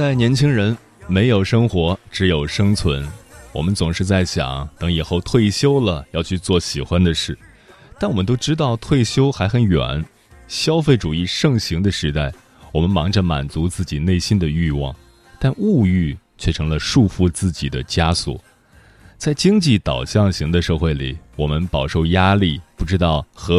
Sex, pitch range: male, 75-105 Hz